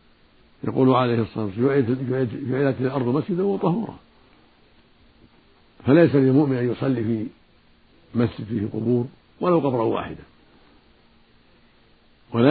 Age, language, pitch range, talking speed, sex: 60-79, Arabic, 115-140 Hz, 95 wpm, male